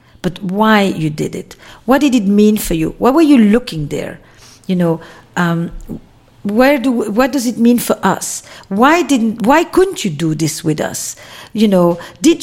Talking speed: 195 wpm